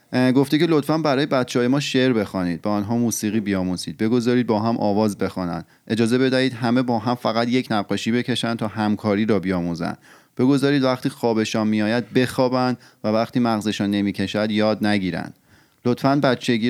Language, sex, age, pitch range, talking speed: Persian, male, 30-49, 105-125 Hz, 160 wpm